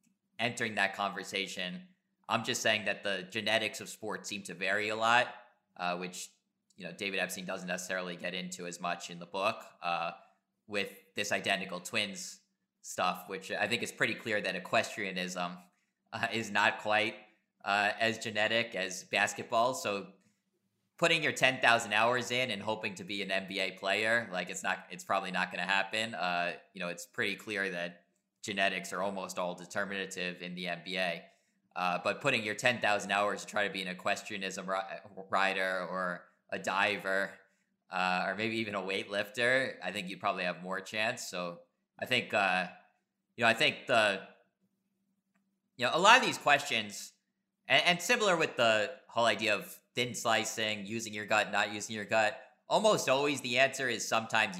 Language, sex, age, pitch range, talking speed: English, male, 20-39, 95-115 Hz, 175 wpm